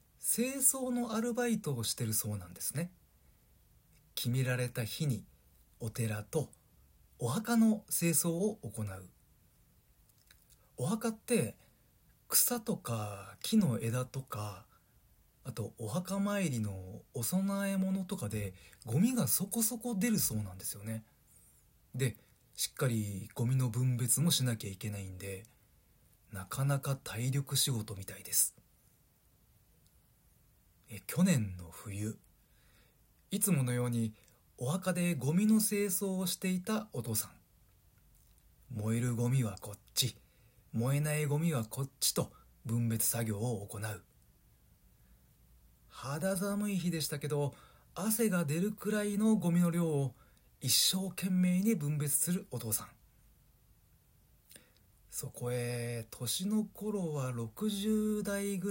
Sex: male